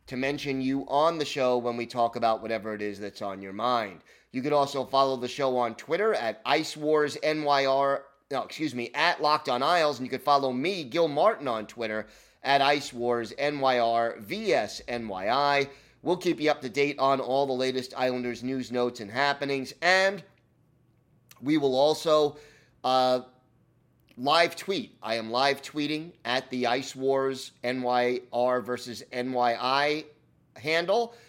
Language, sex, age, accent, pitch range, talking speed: English, male, 30-49, American, 115-140 Hz, 175 wpm